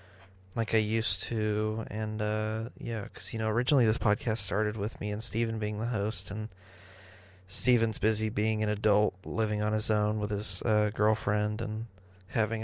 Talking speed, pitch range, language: 175 wpm, 95-115 Hz, English